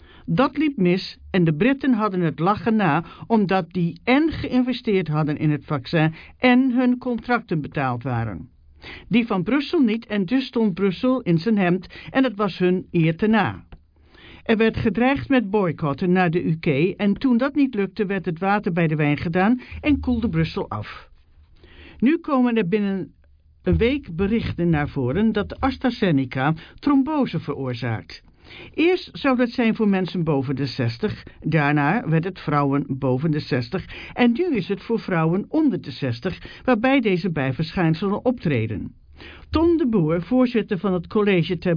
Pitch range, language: 150-240 Hz, English